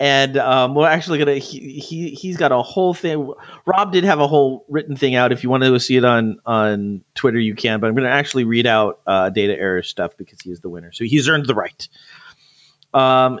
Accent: American